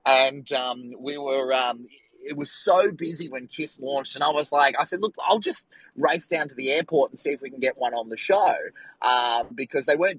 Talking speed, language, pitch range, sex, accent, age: 235 wpm, English, 130-180 Hz, male, Australian, 20-39